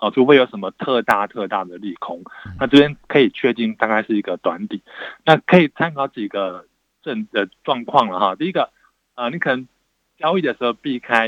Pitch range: 105-145 Hz